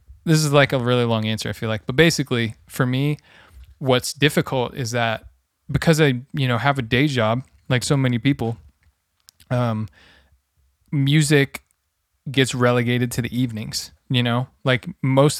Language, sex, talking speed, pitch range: English, male, 160 wpm, 115-140 Hz